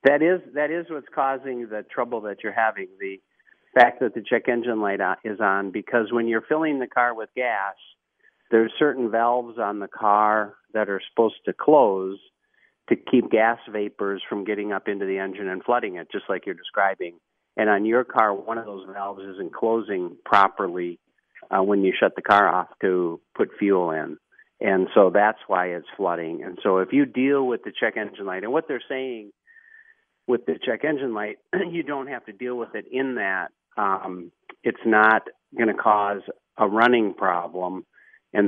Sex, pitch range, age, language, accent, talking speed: male, 95-135 Hz, 50-69, English, American, 190 wpm